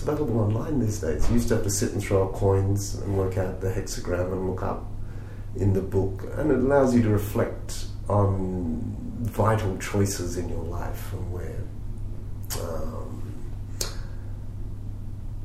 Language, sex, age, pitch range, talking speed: English, male, 40-59, 100-110 Hz, 155 wpm